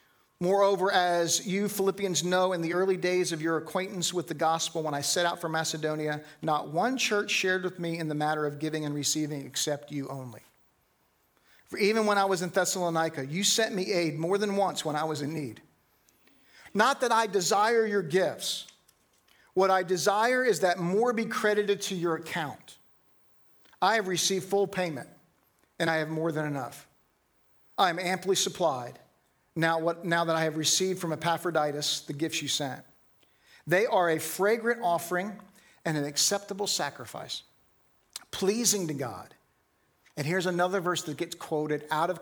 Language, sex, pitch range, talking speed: English, male, 150-190 Hz, 175 wpm